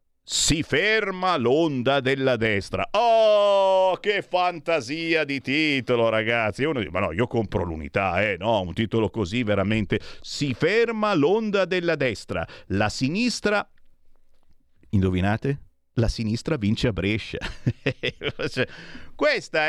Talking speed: 115 wpm